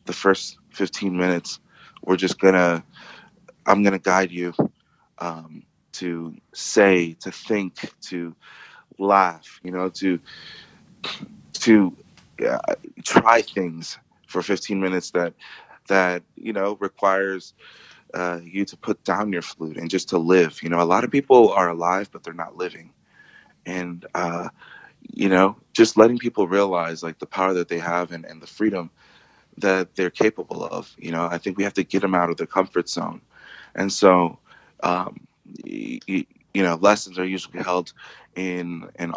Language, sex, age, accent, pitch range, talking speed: English, male, 20-39, American, 85-95 Hz, 160 wpm